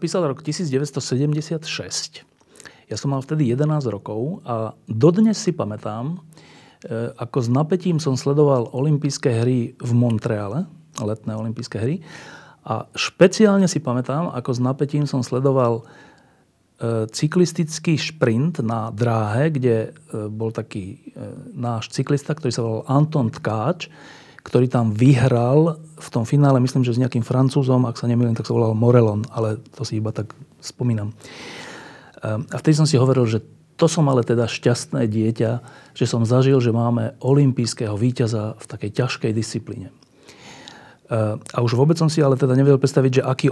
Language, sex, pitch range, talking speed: Slovak, male, 115-150 Hz, 150 wpm